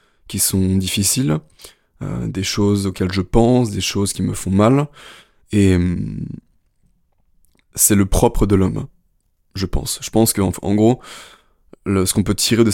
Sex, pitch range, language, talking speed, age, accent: male, 95-115 Hz, French, 165 wpm, 20-39, French